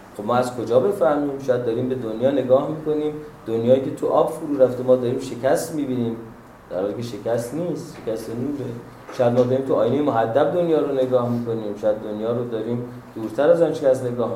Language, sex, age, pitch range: Persian, male, 30-49, 120-155 Hz